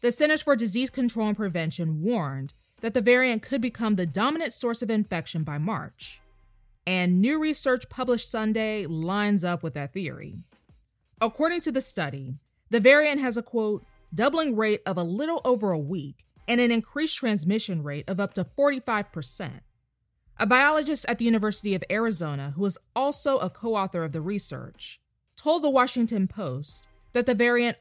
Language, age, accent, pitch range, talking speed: English, 20-39, American, 170-245 Hz, 170 wpm